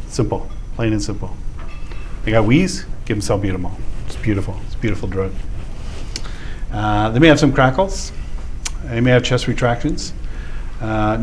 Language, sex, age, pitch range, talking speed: English, male, 50-69, 100-120 Hz, 145 wpm